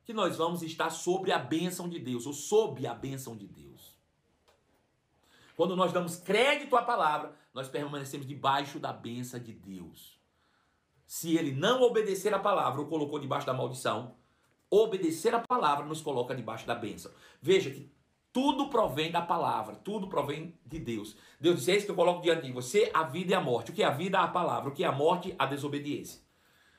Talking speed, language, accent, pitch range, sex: 195 wpm, Portuguese, Brazilian, 135-205 Hz, male